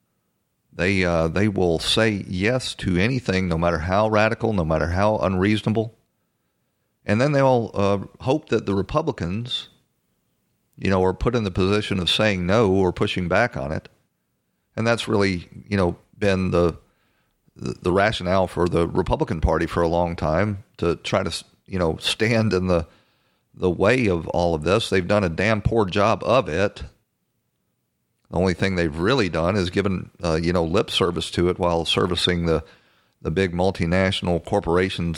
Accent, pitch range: American, 85-105 Hz